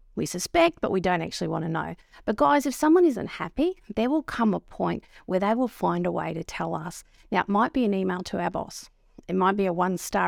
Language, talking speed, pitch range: English, 250 wpm, 180-250 Hz